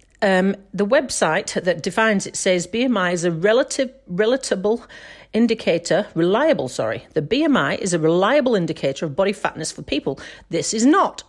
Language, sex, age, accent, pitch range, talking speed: English, female, 50-69, British, 175-250 Hz, 155 wpm